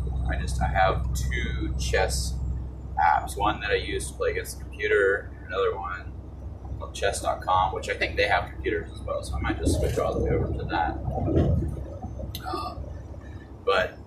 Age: 30-49